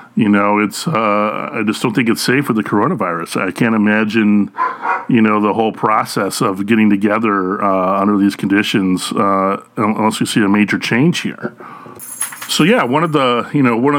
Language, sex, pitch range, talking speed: English, male, 105-130 Hz, 190 wpm